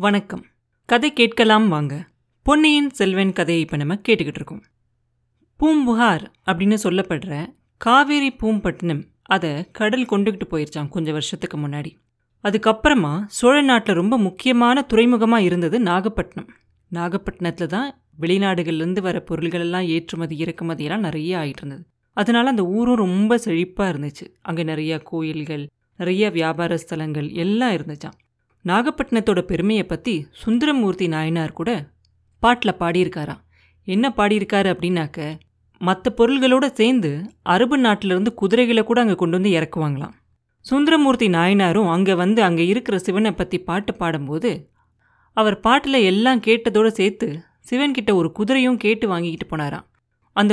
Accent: native